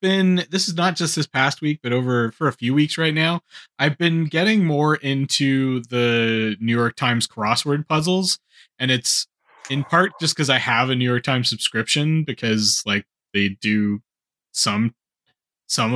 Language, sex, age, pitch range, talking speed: English, male, 20-39, 110-140 Hz, 175 wpm